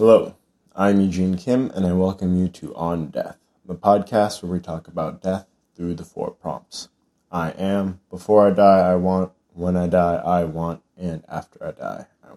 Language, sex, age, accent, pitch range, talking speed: English, male, 20-39, American, 90-105 Hz, 190 wpm